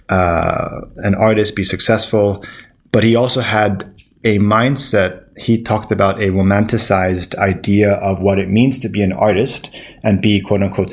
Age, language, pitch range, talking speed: 20-39, English, 95-110 Hz, 160 wpm